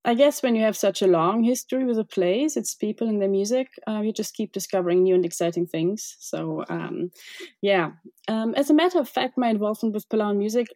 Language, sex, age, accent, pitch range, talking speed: English, female, 20-39, German, 175-220 Hz, 225 wpm